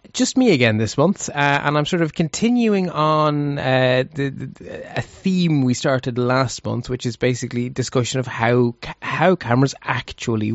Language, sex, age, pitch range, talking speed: English, male, 20-39, 120-155 Hz, 170 wpm